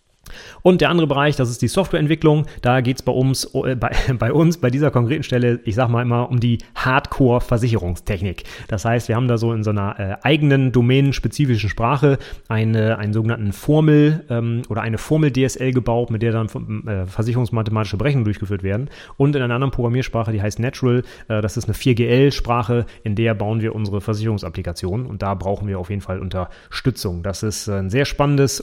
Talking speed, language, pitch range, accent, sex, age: 190 wpm, German, 105-130 Hz, German, male, 30-49